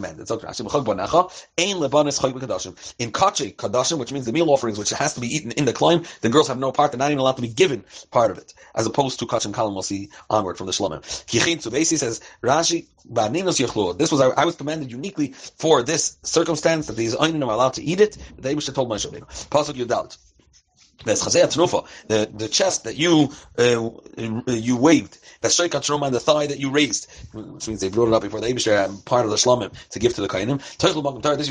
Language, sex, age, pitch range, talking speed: English, male, 30-49, 115-150 Hz, 205 wpm